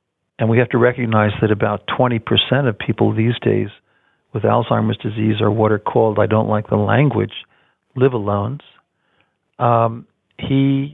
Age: 50-69